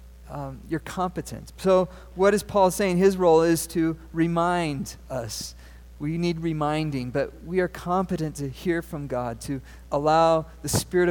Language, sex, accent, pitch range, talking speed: English, male, American, 135-180 Hz, 155 wpm